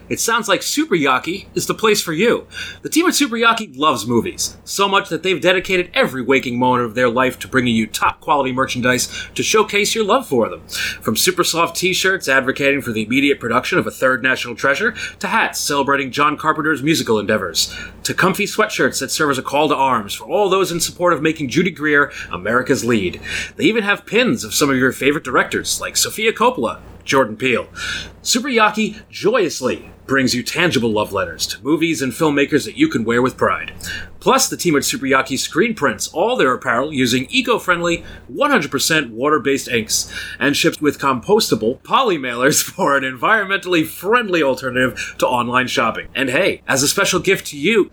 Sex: male